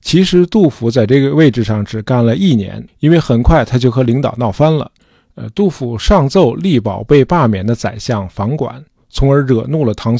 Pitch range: 110-145 Hz